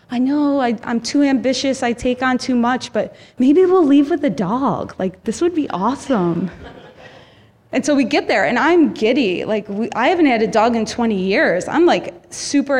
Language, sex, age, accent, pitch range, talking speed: English, female, 20-39, American, 215-290 Hz, 205 wpm